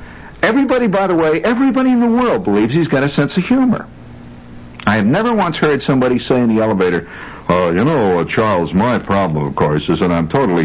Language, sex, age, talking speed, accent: English, male, 60-79, 210 wpm, American